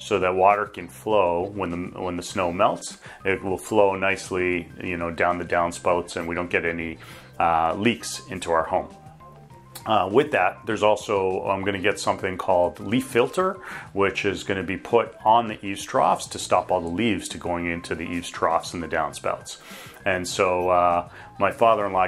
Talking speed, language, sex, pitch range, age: 190 wpm, English, male, 90-105 Hz, 30-49